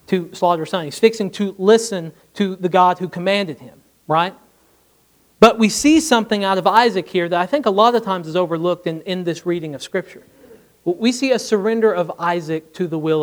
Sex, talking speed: male, 210 wpm